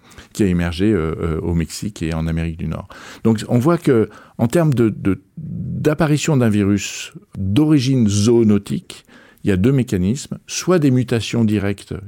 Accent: French